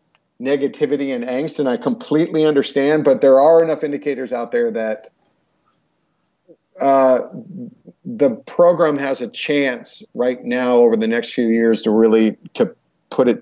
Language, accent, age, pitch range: English, American, 40-59, 125-180 Hz